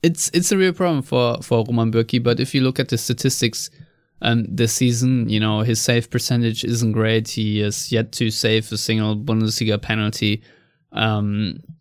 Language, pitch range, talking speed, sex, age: English, 105-125 Hz, 185 wpm, male, 20-39